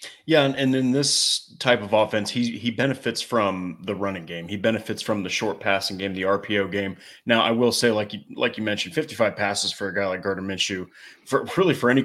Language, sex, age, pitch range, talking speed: English, male, 30-49, 105-120 Hz, 230 wpm